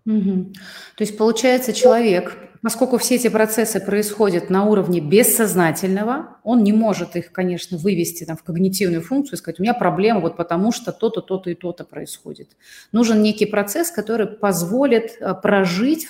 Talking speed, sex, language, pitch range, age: 155 wpm, female, Russian, 170-215 Hz, 30-49